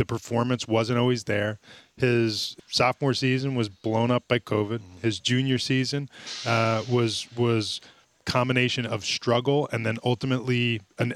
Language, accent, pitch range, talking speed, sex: English, American, 110-130 Hz, 140 wpm, male